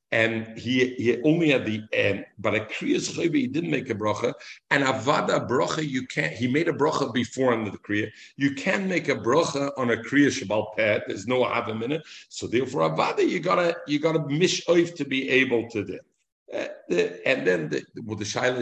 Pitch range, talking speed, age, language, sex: 110-145 Hz, 220 wpm, 50-69, English, male